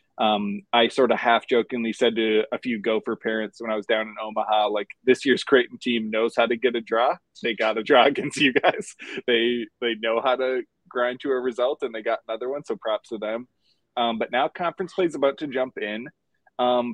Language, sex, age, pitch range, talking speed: English, male, 20-39, 110-130 Hz, 230 wpm